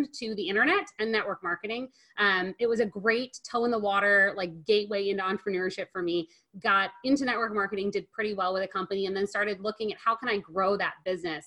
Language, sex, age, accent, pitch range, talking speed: English, female, 30-49, American, 190-235 Hz, 220 wpm